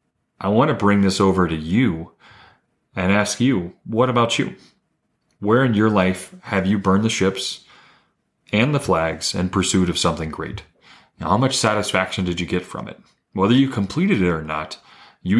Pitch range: 90-105 Hz